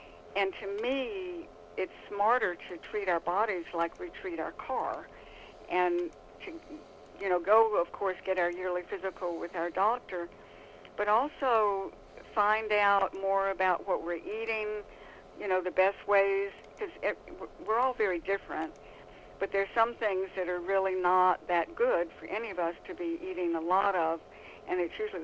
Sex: female